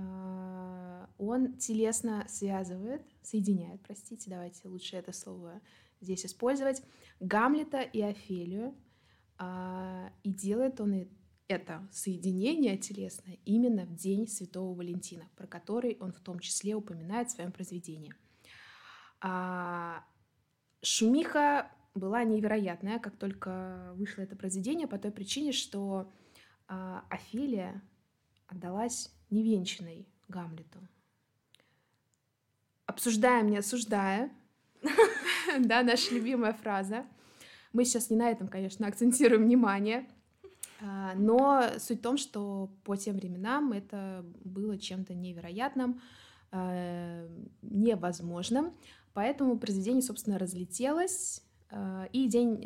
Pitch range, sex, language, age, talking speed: 185-235 Hz, female, Russian, 20-39, 95 wpm